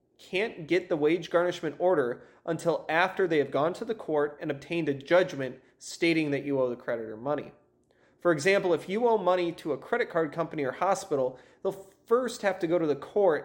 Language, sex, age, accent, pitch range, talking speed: English, male, 30-49, American, 145-180 Hz, 205 wpm